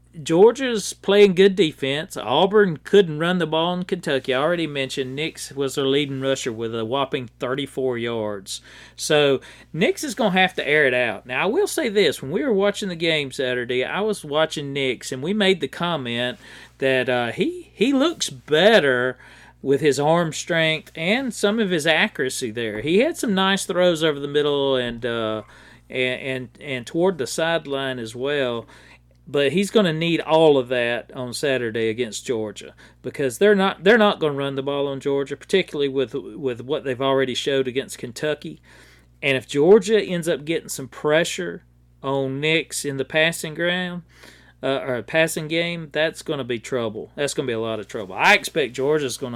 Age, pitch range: 40-59, 125-170 Hz